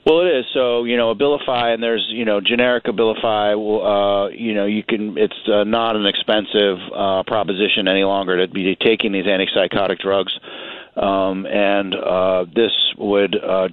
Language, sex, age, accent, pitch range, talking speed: English, male, 40-59, American, 100-115 Hz, 170 wpm